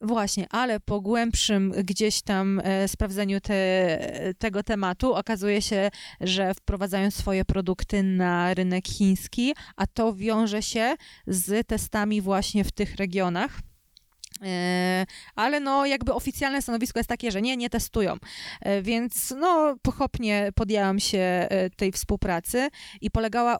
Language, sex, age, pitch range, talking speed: Polish, female, 20-39, 190-225 Hz, 125 wpm